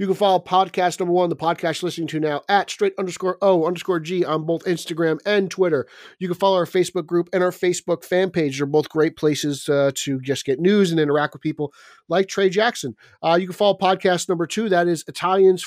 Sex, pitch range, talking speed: male, 145-180 Hz, 230 wpm